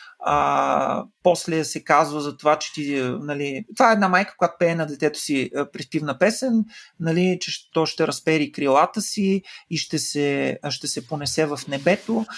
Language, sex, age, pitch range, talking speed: Bulgarian, male, 30-49, 145-185 Hz, 170 wpm